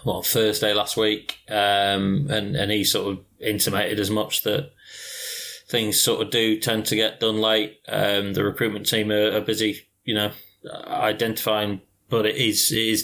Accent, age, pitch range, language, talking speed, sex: British, 20-39, 105-115 Hz, English, 175 wpm, male